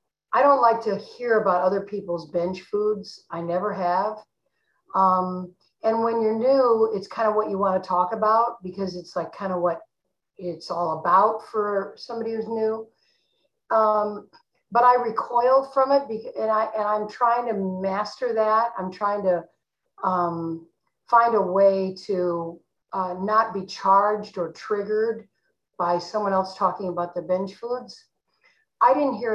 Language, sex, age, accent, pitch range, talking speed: English, female, 50-69, American, 185-220 Hz, 160 wpm